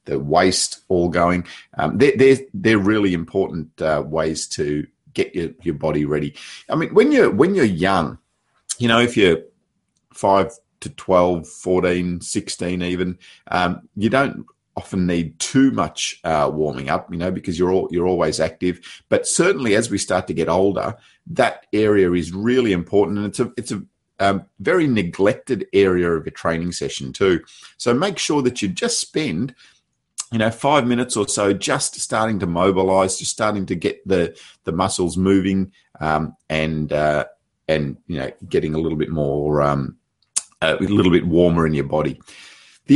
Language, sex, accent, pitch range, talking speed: English, male, Australian, 85-105 Hz, 175 wpm